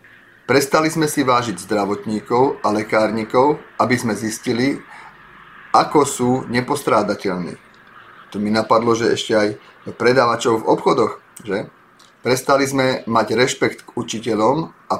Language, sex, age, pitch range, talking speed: Slovak, male, 40-59, 110-135 Hz, 120 wpm